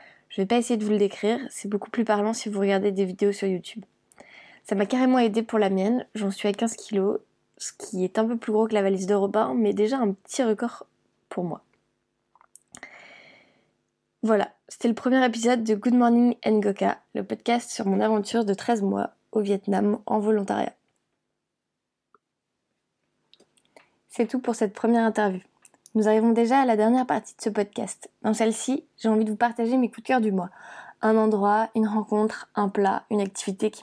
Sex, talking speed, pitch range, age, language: female, 195 wpm, 205-230 Hz, 20-39, French